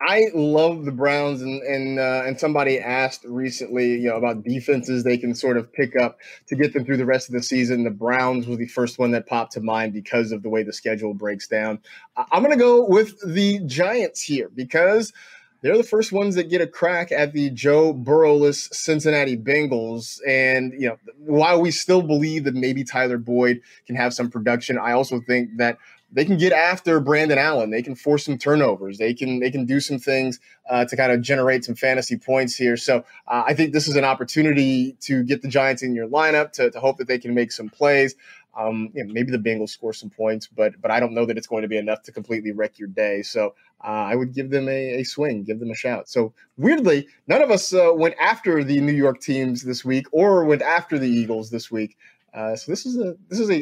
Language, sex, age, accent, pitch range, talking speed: English, male, 30-49, American, 120-150 Hz, 235 wpm